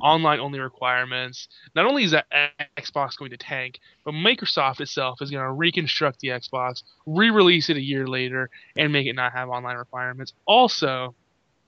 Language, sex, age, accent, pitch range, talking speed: English, male, 20-39, American, 130-150 Hz, 165 wpm